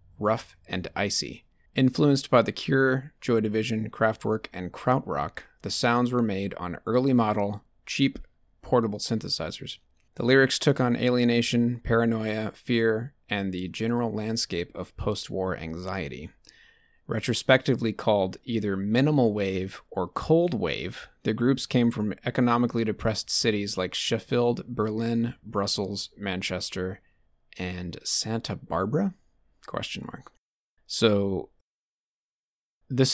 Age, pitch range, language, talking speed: 30-49, 95-120 Hz, English, 115 wpm